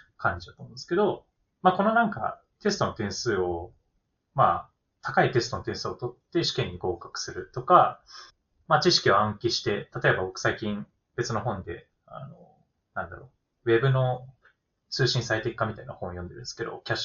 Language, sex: Japanese, male